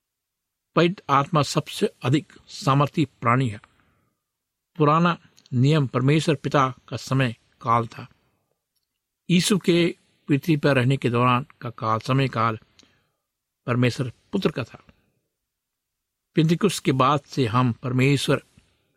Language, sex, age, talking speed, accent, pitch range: Hindi, male, 60-79, 115 wpm, native, 125-160 Hz